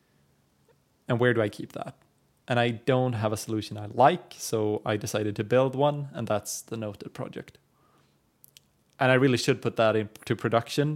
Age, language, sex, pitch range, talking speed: 20-39, English, male, 105-125 Hz, 180 wpm